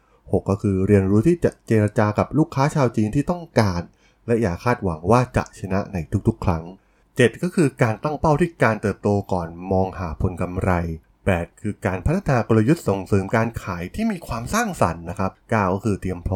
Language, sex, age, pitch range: Thai, male, 20-39, 90-115 Hz